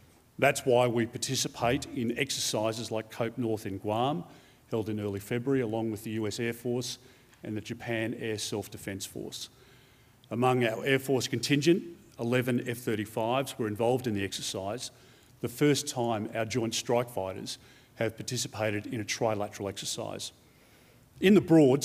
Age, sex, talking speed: 40-59, male, 150 wpm